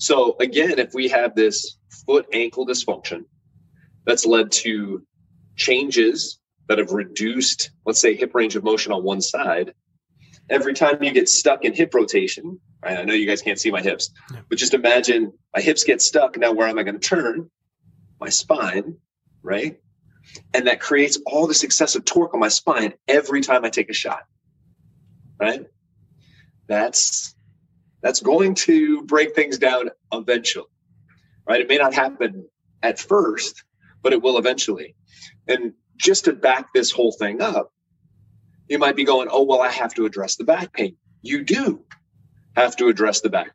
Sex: male